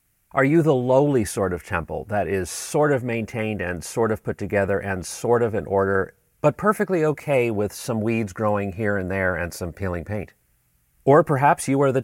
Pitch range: 100-140 Hz